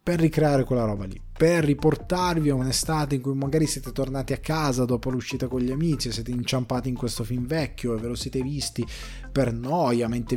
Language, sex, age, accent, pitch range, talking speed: Italian, male, 20-39, native, 115-140 Hz, 205 wpm